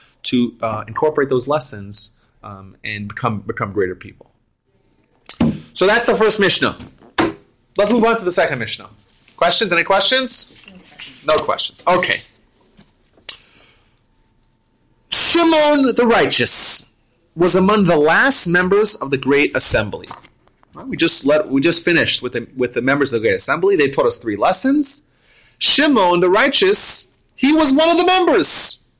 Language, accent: English, American